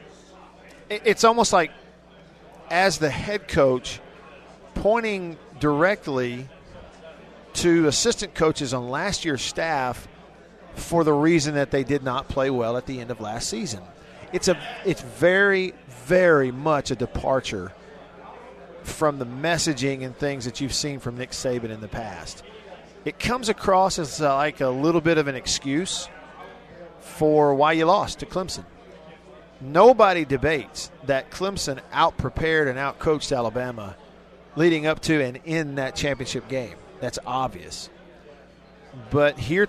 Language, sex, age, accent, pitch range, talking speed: English, male, 40-59, American, 130-170 Hz, 135 wpm